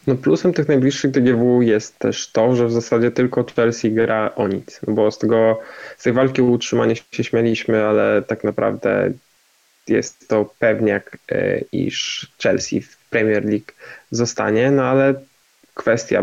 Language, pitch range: Polish, 105-120 Hz